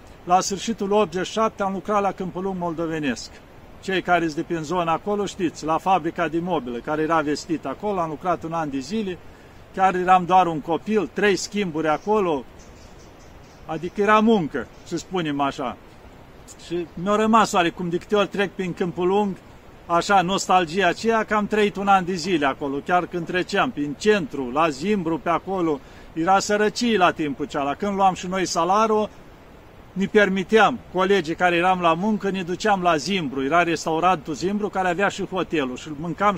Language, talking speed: Romanian, 170 wpm